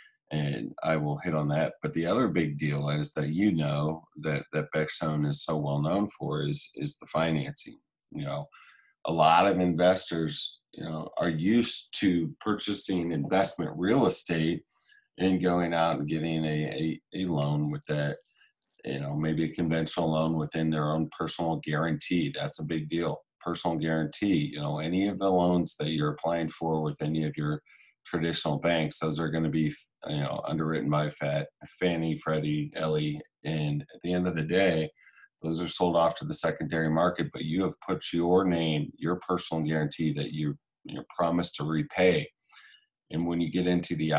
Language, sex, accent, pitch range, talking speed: English, male, American, 75-85 Hz, 185 wpm